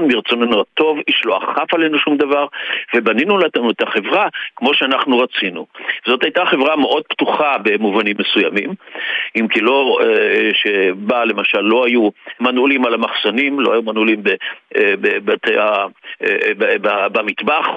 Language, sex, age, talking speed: Hebrew, male, 50-69, 120 wpm